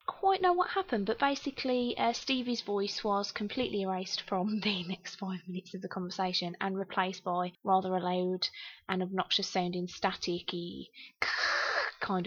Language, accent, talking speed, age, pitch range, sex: English, British, 150 wpm, 20-39, 185-235 Hz, female